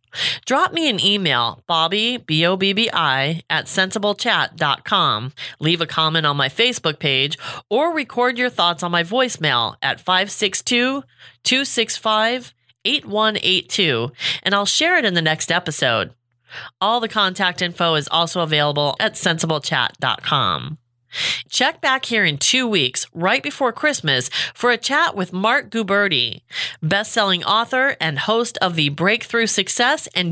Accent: American